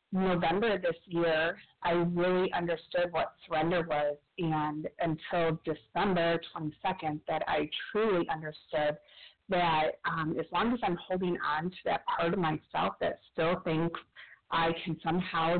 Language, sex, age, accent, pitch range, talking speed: English, female, 40-59, American, 160-185 Hz, 140 wpm